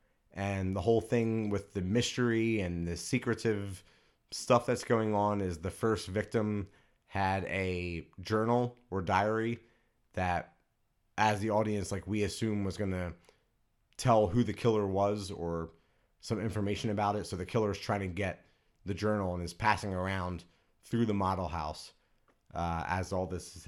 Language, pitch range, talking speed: English, 95-110 Hz, 165 wpm